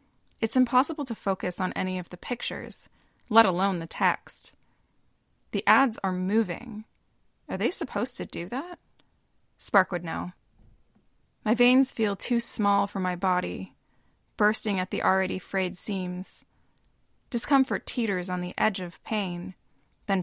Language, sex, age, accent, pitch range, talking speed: English, female, 20-39, American, 180-220 Hz, 140 wpm